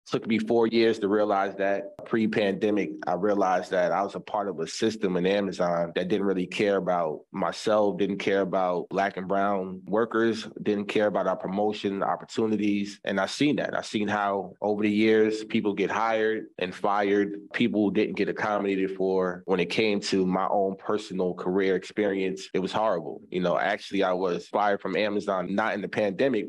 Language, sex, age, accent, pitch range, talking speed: English, male, 20-39, American, 95-105 Hz, 190 wpm